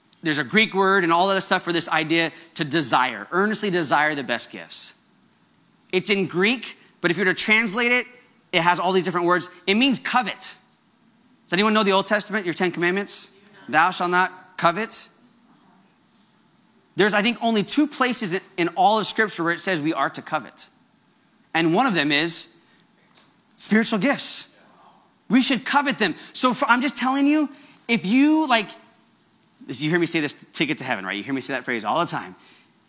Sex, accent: male, American